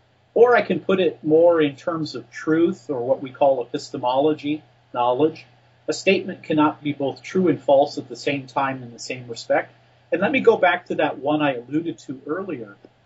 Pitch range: 130-165 Hz